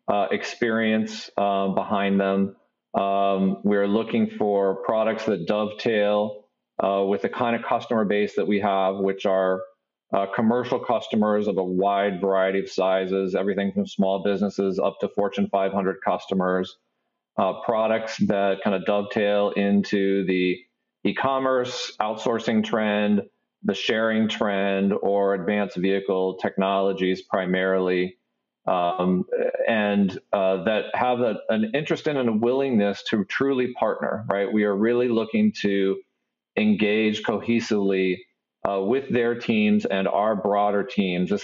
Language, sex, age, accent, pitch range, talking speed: English, male, 40-59, American, 95-110 Hz, 135 wpm